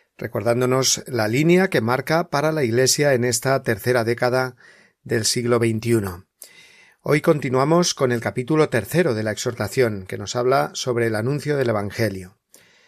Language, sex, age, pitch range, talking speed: Spanish, male, 40-59, 120-155 Hz, 150 wpm